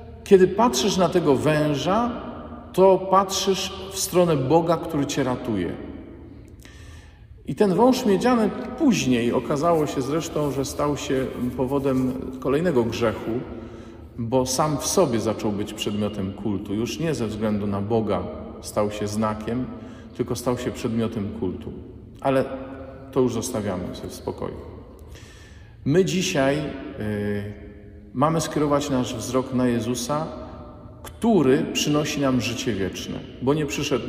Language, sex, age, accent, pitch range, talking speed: Polish, male, 50-69, native, 110-140 Hz, 125 wpm